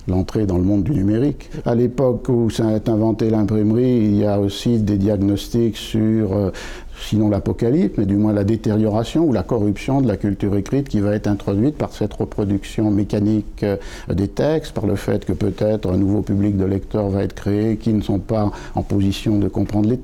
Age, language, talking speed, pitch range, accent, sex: 60-79, French, 195 wpm, 100-115 Hz, French, male